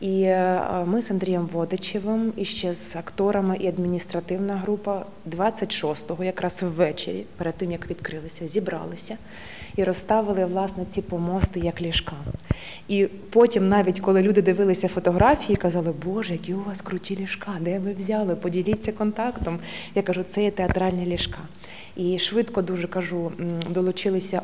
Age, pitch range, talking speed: 20-39, 180-200 Hz, 140 wpm